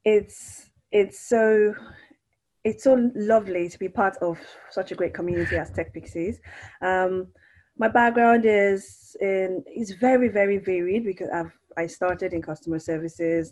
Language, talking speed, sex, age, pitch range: English, 140 wpm, female, 20-39, 170-210 Hz